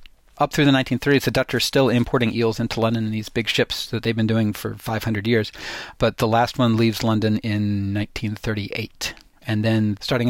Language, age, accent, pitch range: English, 40-59, American, 110-130 Hz